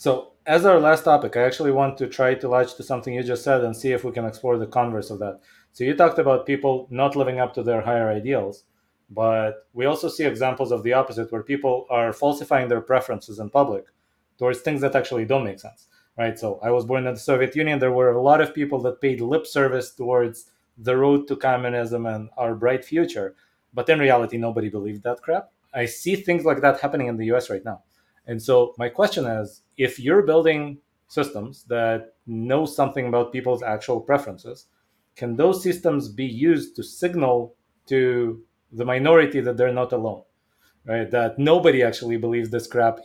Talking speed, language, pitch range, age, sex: 200 wpm, English, 115-135 Hz, 20-39, male